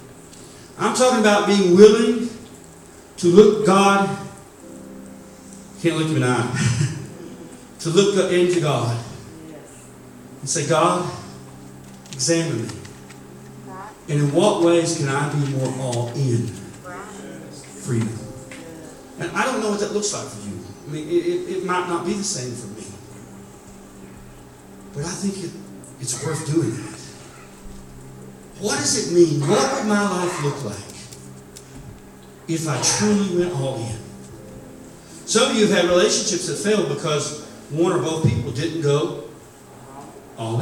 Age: 40-59